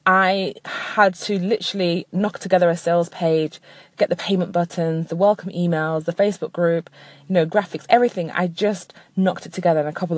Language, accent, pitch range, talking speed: English, British, 170-200 Hz, 185 wpm